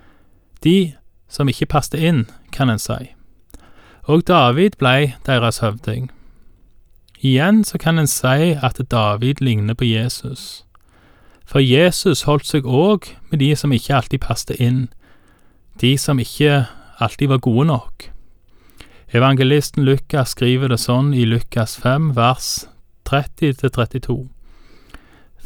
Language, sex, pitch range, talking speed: Danish, male, 115-140 Hz, 125 wpm